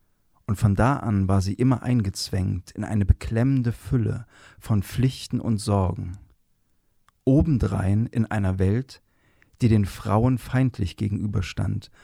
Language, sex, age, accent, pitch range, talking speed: German, male, 40-59, German, 100-130 Hz, 125 wpm